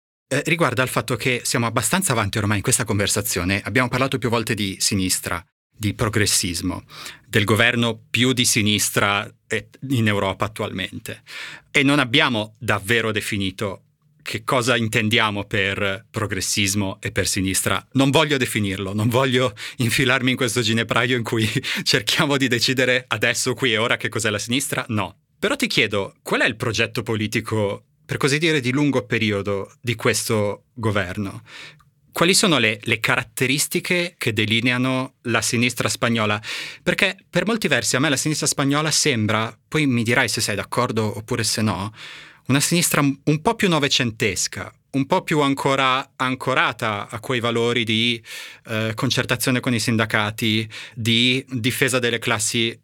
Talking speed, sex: 150 wpm, male